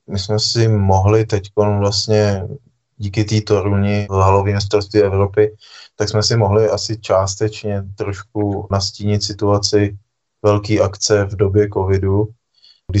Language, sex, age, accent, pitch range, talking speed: Czech, male, 20-39, native, 95-105 Hz, 125 wpm